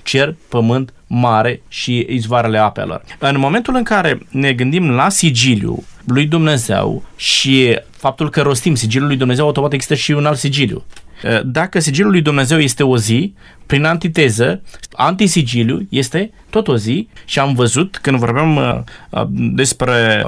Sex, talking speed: male, 145 wpm